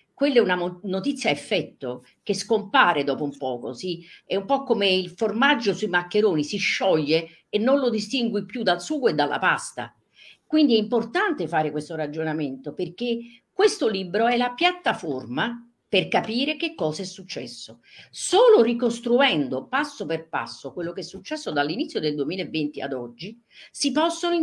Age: 50-69